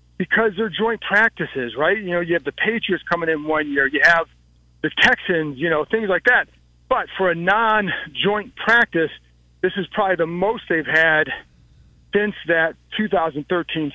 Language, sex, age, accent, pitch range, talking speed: English, male, 40-59, American, 155-200 Hz, 170 wpm